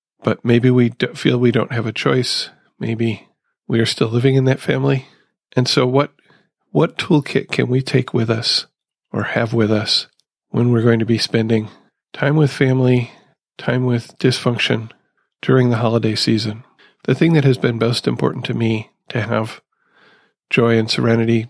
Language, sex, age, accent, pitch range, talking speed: English, male, 40-59, American, 115-130 Hz, 175 wpm